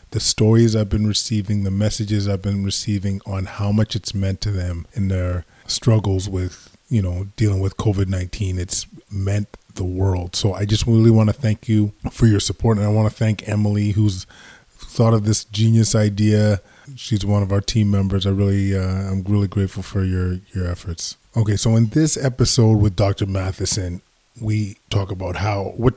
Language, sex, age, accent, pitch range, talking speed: English, male, 20-39, American, 95-110 Hz, 195 wpm